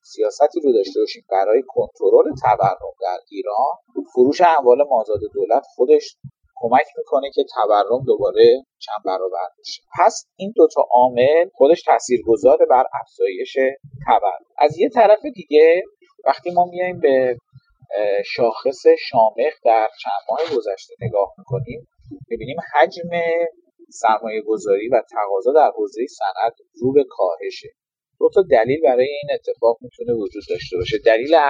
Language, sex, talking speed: Persian, male, 135 wpm